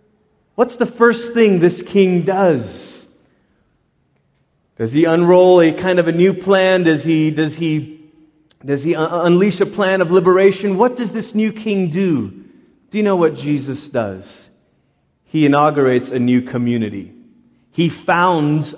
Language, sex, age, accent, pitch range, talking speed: English, male, 30-49, American, 130-180 Hz, 150 wpm